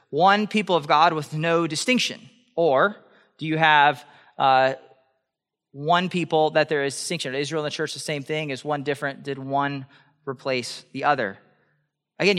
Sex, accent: male, American